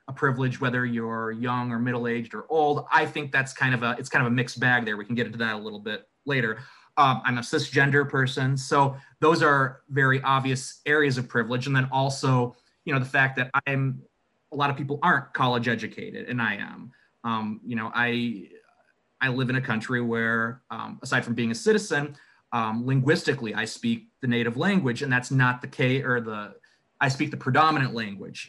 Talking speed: 205 wpm